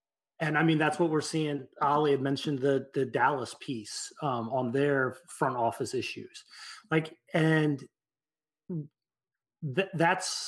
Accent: American